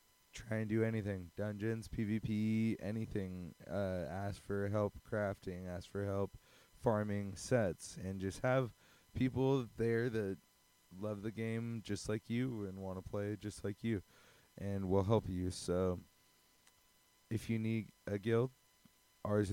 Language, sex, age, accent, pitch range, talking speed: English, male, 20-39, American, 100-120 Hz, 145 wpm